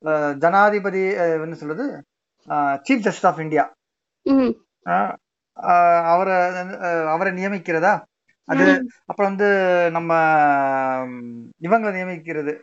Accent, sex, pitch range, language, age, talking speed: native, male, 160-220 Hz, Tamil, 30-49, 60 wpm